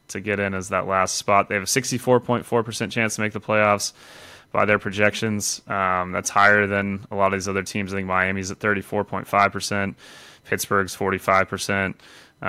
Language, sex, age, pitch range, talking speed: English, male, 20-39, 95-105 Hz, 180 wpm